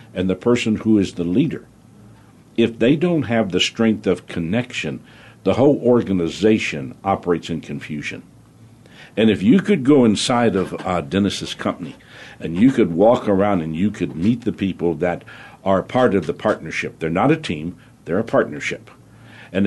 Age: 60-79